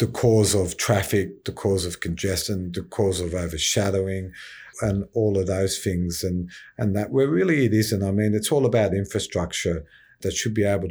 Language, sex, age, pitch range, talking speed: English, male, 50-69, 95-115 Hz, 185 wpm